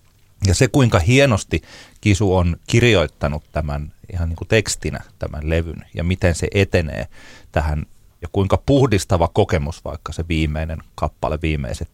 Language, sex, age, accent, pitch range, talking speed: Finnish, male, 40-59, native, 80-110 Hz, 135 wpm